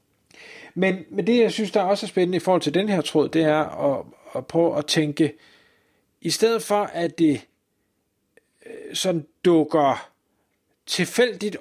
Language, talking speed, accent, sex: Danish, 160 wpm, native, male